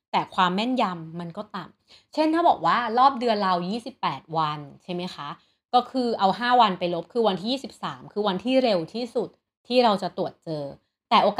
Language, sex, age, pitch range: Thai, female, 30-49, 170-245 Hz